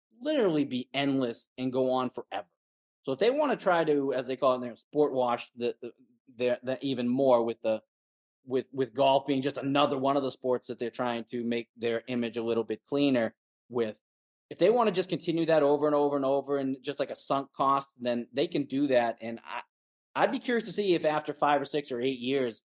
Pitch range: 125-150 Hz